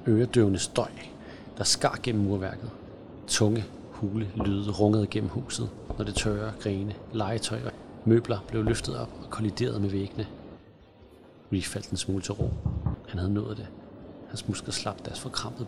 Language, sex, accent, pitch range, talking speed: Danish, male, native, 100-110 Hz, 155 wpm